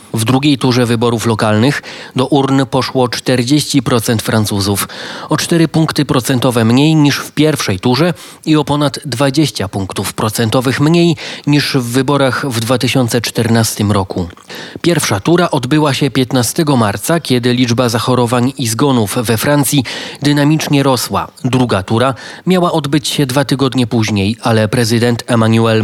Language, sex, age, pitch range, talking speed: Polish, male, 30-49, 115-145 Hz, 135 wpm